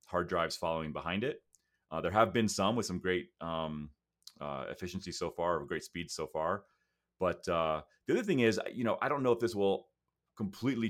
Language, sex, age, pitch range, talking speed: English, male, 30-49, 80-100 Hz, 210 wpm